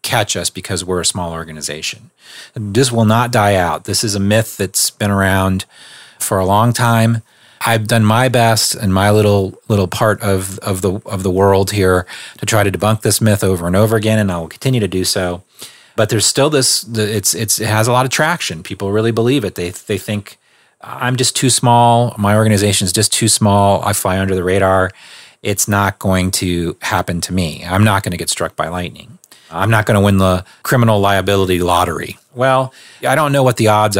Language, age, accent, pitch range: English, 30-49, American, 95-115 Hz